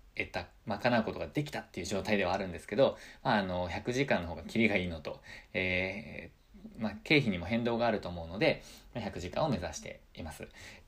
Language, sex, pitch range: Japanese, male, 90-130 Hz